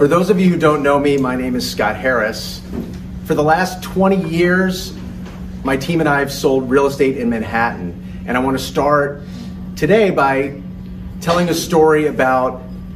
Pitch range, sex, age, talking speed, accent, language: 100-155 Hz, male, 30-49, 180 wpm, American, English